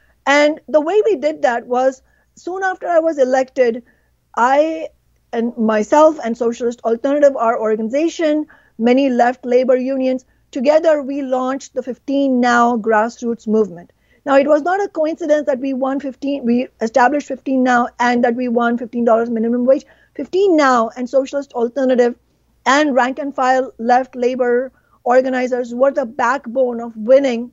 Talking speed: 155 wpm